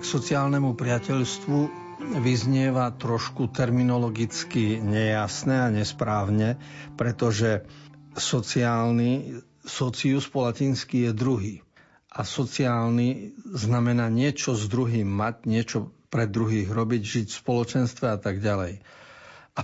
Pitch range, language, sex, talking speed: 110-130 Hz, Slovak, male, 105 wpm